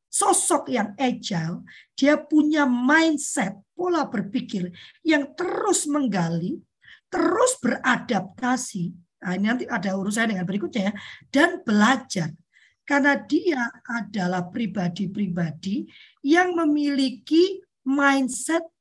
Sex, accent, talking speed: female, native, 95 wpm